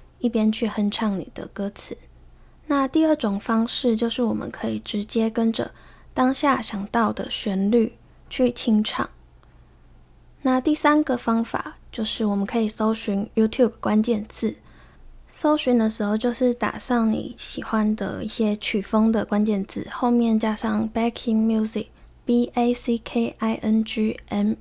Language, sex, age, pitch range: Chinese, female, 10-29, 205-240 Hz